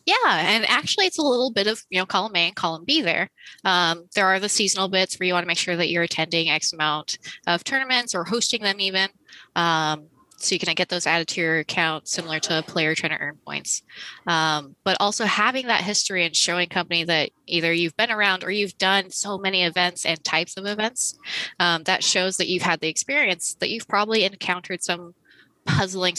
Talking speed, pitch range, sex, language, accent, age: 220 wpm, 165-195 Hz, female, English, American, 20-39